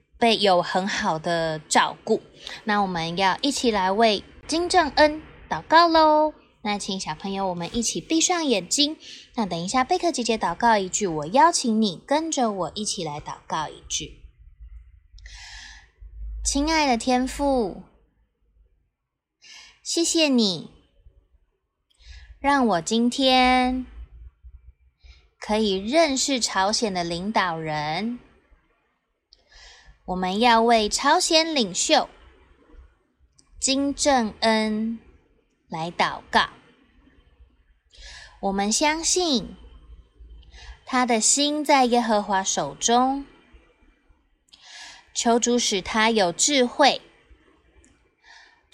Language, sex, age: Chinese, female, 20-39